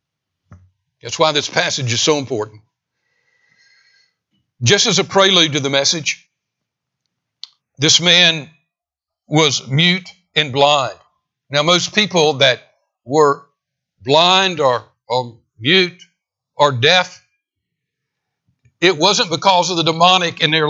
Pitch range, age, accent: 135-175 Hz, 60-79, American